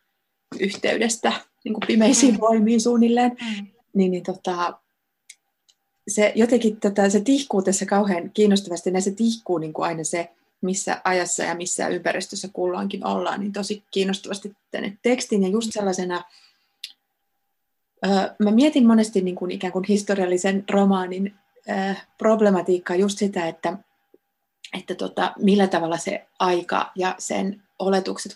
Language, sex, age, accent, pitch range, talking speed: Finnish, female, 30-49, native, 185-210 Hz, 130 wpm